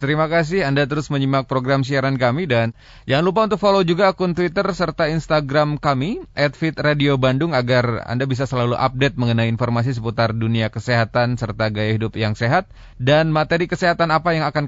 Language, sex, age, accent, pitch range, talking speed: Indonesian, male, 20-39, native, 115-145 Hz, 175 wpm